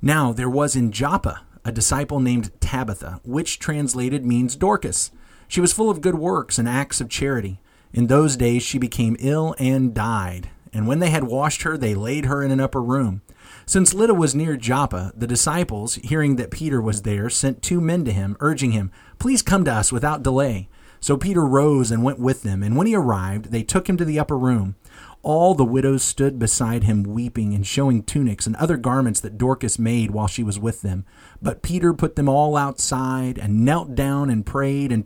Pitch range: 110-140 Hz